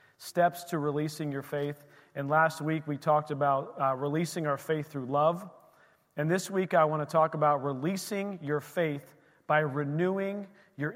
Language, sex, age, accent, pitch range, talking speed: English, male, 40-59, American, 145-165 Hz, 170 wpm